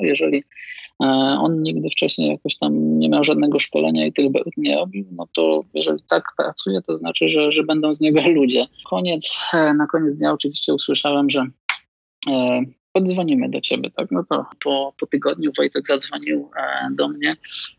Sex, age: male, 20-39